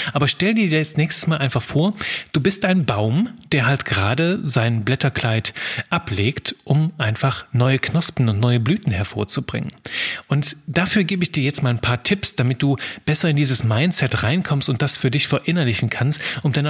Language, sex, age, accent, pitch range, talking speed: German, male, 30-49, German, 125-170 Hz, 185 wpm